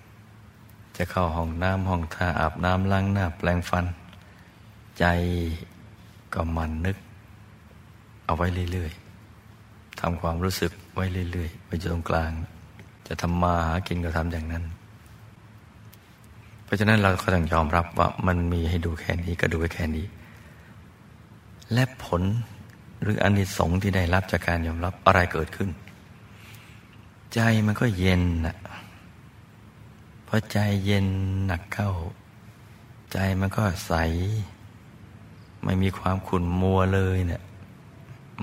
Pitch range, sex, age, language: 90-110 Hz, male, 60-79, Thai